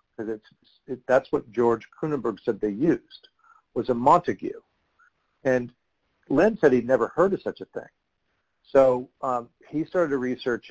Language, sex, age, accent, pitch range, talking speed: English, male, 50-69, American, 115-140 Hz, 160 wpm